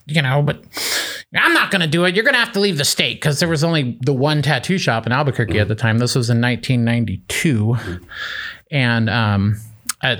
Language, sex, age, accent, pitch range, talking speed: English, male, 30-49, American, 115-150 Hz, 205 wpm